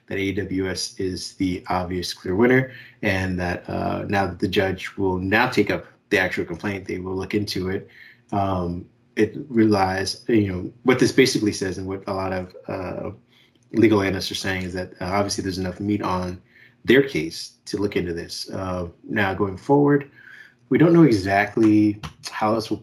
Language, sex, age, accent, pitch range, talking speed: English, male, 30-49, American, 95-110 Hz, 185 wpm